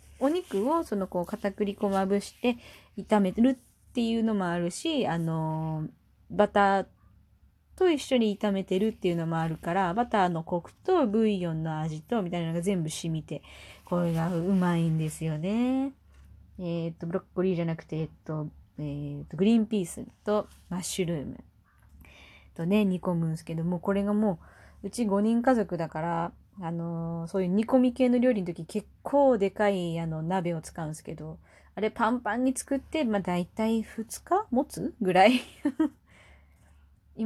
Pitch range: 165-220 Hz